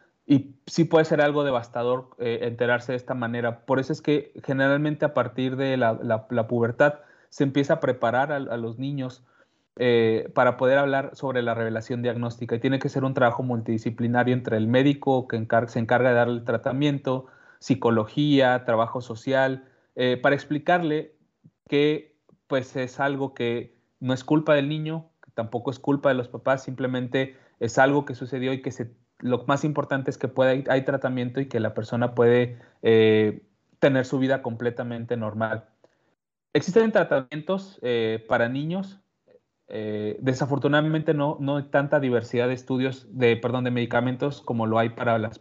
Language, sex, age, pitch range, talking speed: Spanish, male, 30-49, 120-140 Hz, 175 wpm